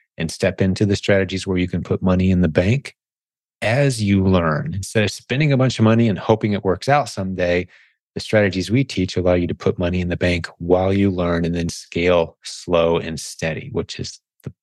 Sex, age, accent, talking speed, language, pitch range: male, 30-49, American, 215 wpm, English, 90-110 Hz